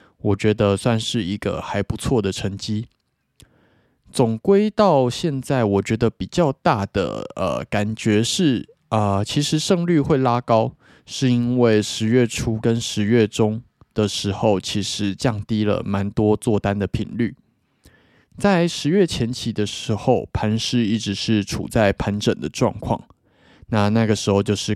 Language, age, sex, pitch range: Chinese, 20-39, male, 105-125 Hz